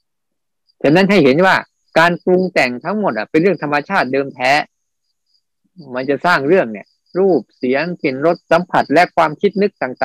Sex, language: male, Thai